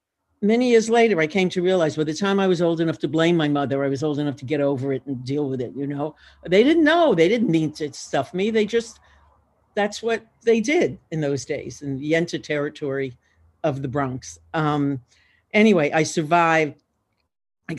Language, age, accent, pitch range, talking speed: English, 60-79, American, 150-200 Hz, 215 wpm